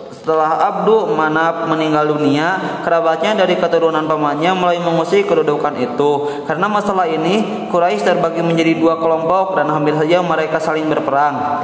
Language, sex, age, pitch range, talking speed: Indonesian, male, 20-39, 155-195 Hz, 140 wpm